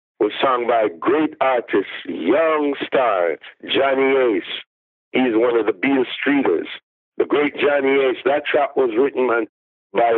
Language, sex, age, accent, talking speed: English, male, 60-79, American, 155 wpm